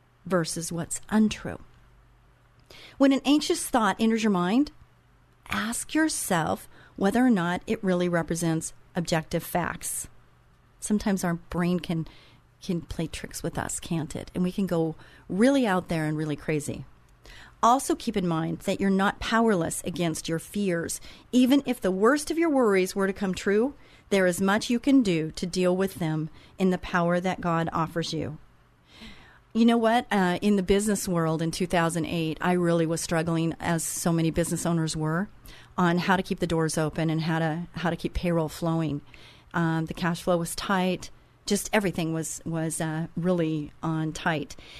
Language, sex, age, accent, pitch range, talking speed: English, female, 40-59, American, 165-205 Hz, 175 wpm